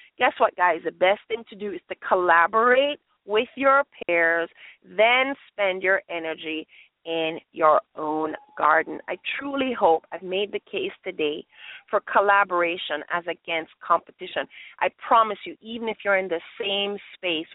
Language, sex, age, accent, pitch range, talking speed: English, female, 30-49, American, 175-235 Hz, 155 wpm